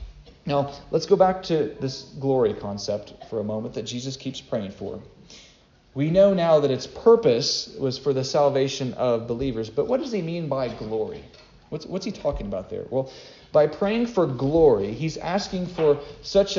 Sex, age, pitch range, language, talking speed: male, 40-59, 135-190 Hz, English, 180 wpm